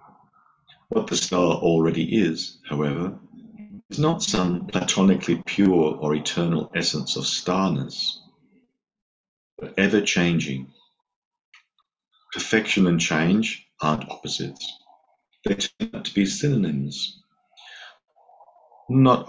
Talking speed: 90 wpm